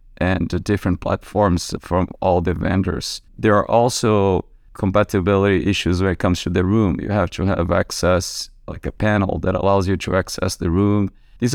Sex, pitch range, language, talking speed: male, 90-105 Hz, English, 175 wpm